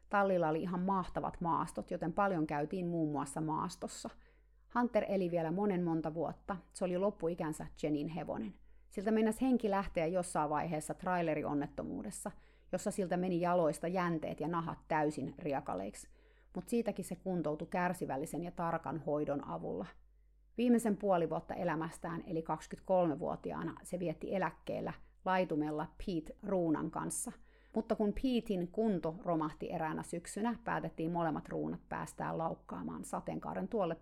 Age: 30-49